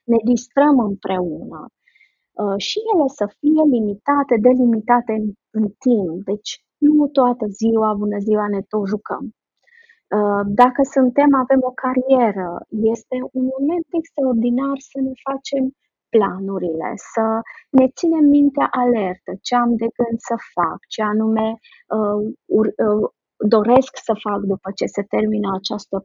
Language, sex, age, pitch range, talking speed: Romanian, female, 30-49, 205-255 Hz, 140 wpm